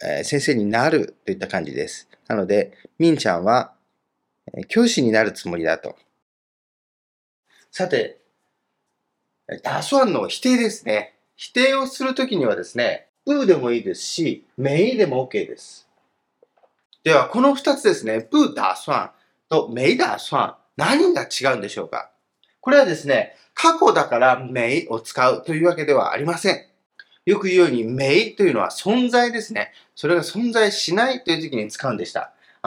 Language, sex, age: Japanese, male, 40-59